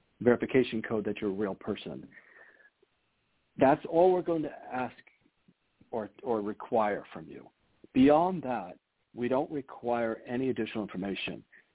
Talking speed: 135 wpm